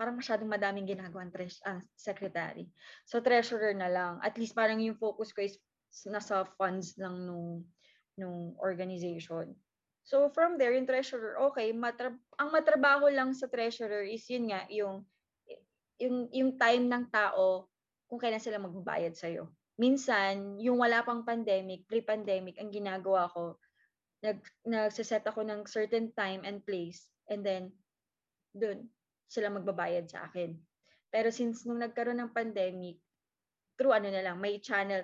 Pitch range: 190-230 Hz